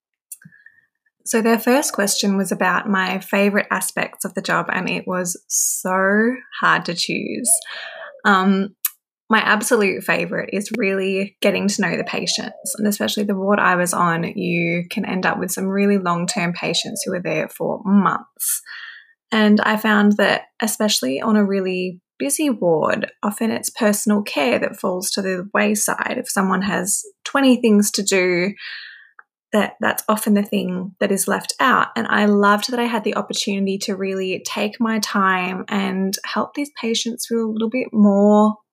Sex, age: female, 20-39